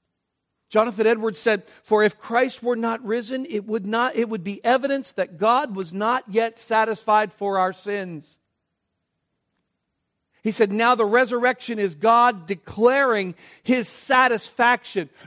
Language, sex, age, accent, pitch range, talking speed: English, male, 50-69, American, 210-255 Hz, 130 wpm